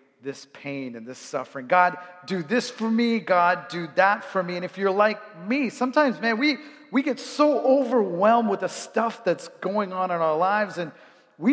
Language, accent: English, American